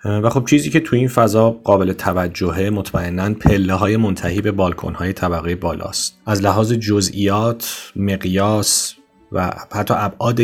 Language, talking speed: Persian, 145 wpm